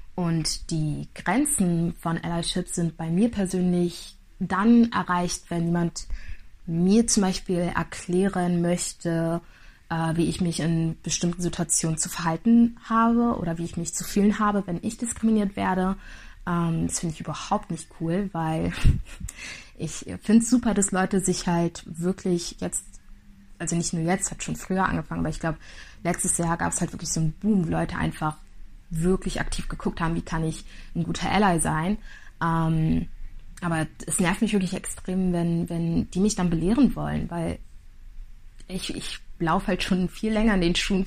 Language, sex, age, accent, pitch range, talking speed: German, female, 20-39, German, 165-190 Hz, 165 wpm